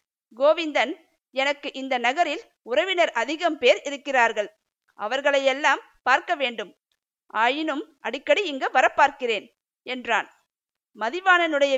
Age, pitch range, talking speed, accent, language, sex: 50-69, 260-320 Hz, 85 wpm, native, Tamil, female